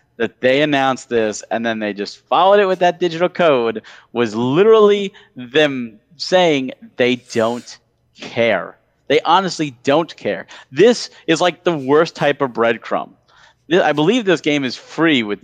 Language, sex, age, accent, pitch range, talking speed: English, male, 40-59, American, 120-180 Hz, 155 wpm